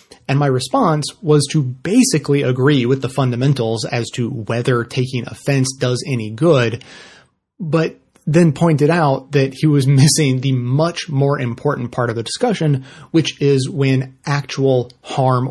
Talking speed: 150 wpm